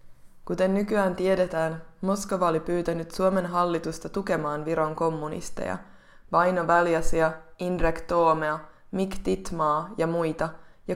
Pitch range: 160-190 Hz